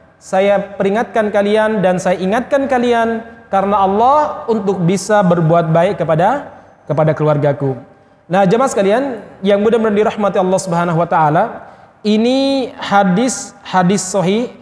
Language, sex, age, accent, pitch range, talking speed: Indonesian, male, 30-49, native, 180-215 Hz, 125 wpm